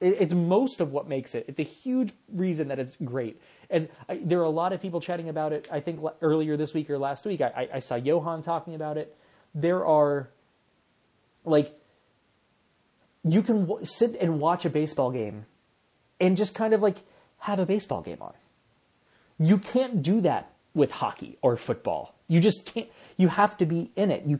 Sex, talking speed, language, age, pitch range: male, 190 wpm, English, 30-49, 145-185 Hz